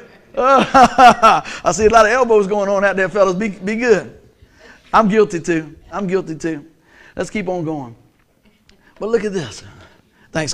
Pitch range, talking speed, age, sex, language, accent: 135-200 Hz, 165 wpm, 60-79, male, English, American